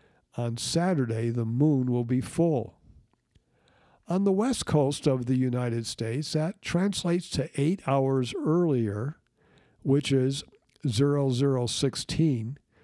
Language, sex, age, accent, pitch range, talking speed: English, male, 60-79, American, 125-160 Hz, 110 wpm